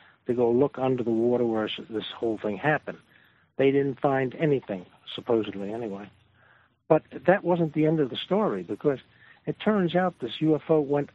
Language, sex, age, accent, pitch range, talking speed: English, male, 60-79, American, 115-170 Hz, 170 wpm